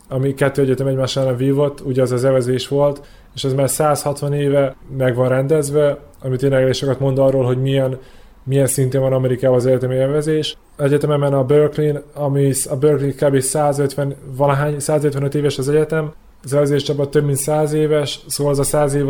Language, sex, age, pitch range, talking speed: Hungarian, male, 20-39, 135-150 Hz, 180 wpm